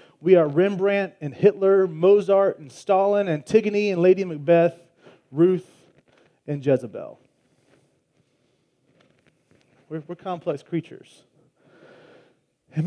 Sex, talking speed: male, 95 wpm